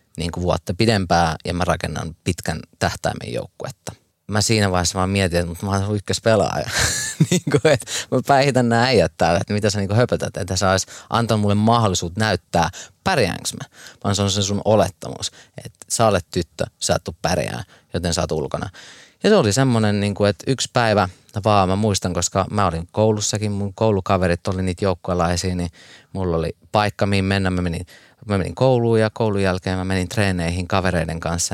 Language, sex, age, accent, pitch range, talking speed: Finnish, male, 30-49, native, 90-105 Hz, 170 wpm